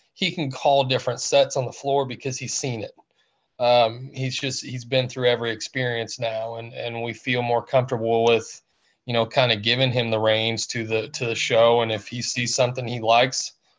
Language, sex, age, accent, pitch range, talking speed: Russian, male, 20-39, American, 115-130 Hz, 210 wpm